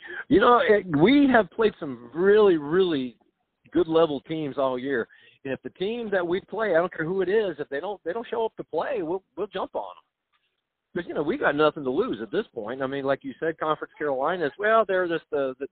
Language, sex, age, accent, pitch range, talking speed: English, male, 50-69, American, 140-185 Hz, 240 wpm